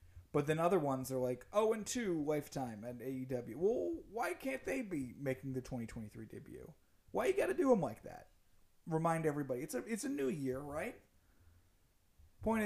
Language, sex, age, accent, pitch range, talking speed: English, male, 30-49, American, 95-145 Hz, 195 wpm